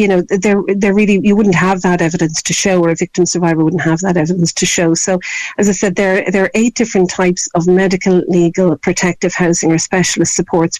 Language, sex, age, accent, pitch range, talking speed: English, female, 50-69, Irish, 170-190 Hz, 220 wpm